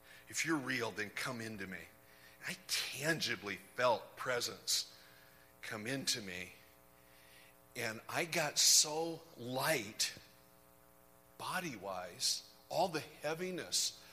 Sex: male